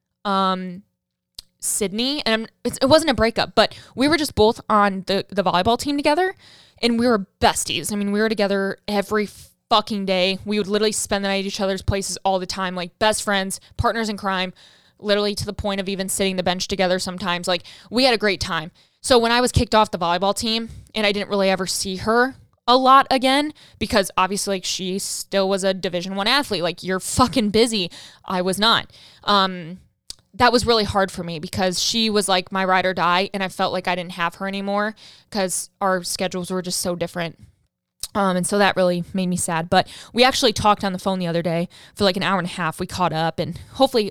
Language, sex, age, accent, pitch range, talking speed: English, female, 10-29, American, 185-215 Hz, 220 wpm